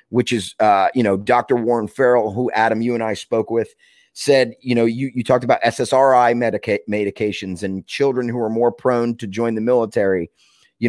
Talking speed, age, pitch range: 200 wpm, 30-49, 110-135 Hz